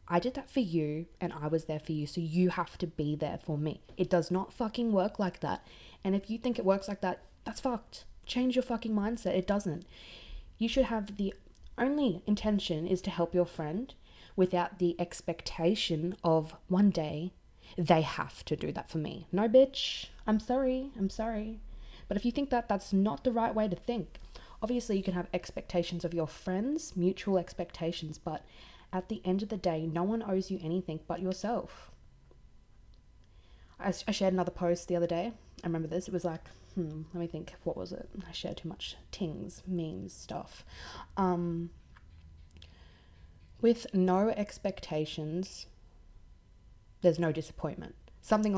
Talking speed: 180 wpm